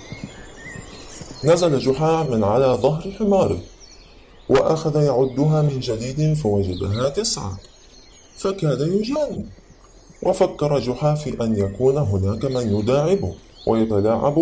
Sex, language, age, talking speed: male, French, 20-39, 90 wpm